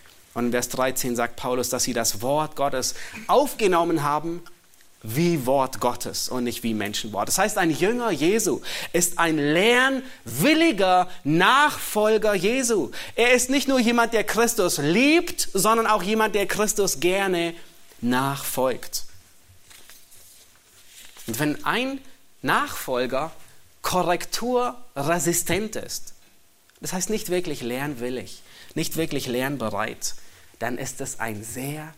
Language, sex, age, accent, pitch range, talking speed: German, male, 30-49, German, 125-180 Hz, 120 wpm